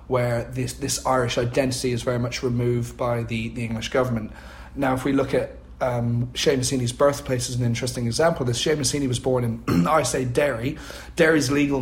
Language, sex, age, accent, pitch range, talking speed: English, male, 30-49, British, 115-135 Hz, 200 wpm